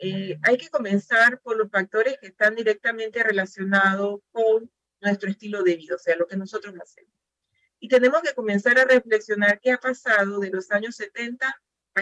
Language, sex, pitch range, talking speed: Spanish, female, 195-245 Hz, 180 wpm